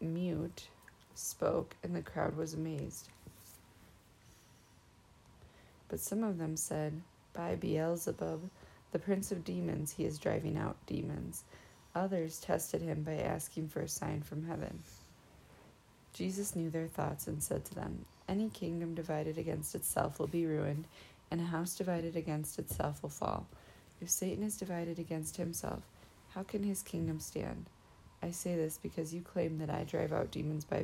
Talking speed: 155 wpm